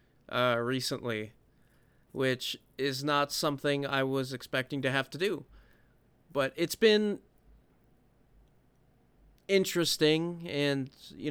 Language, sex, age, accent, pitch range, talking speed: English, male, 30-49, American, 120-145 Hz, 100 wpm